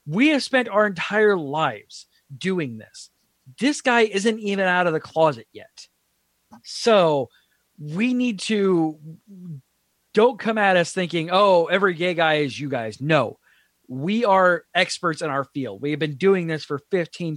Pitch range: 140-180 Hz